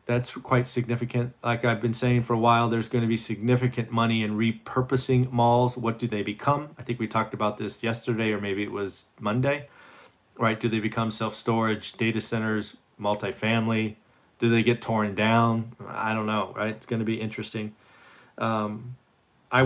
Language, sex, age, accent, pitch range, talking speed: English, male, 40-59, American, 110-125 Hz, 180 wpm